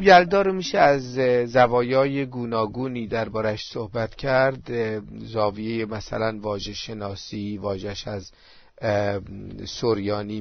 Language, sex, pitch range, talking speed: Persian, male, 100-115 Hz, 90 wpm